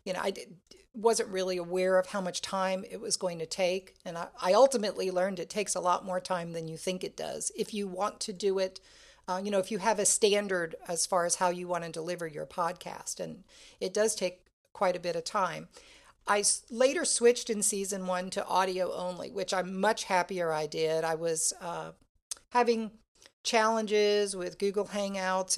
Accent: American